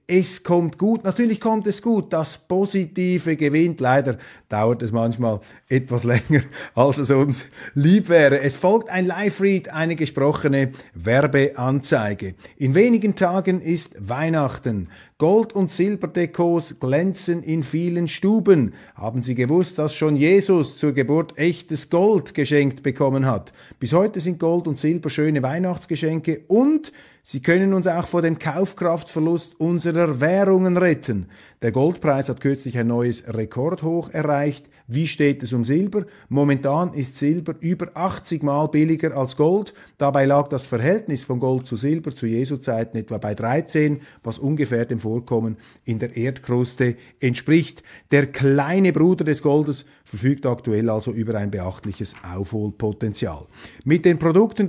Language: German